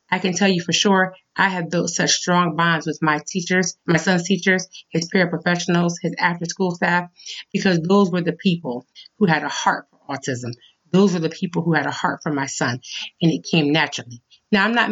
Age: 30-49